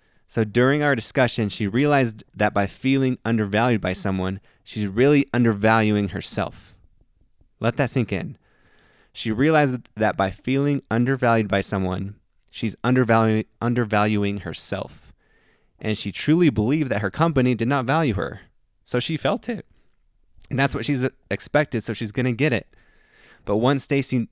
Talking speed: 150 wpm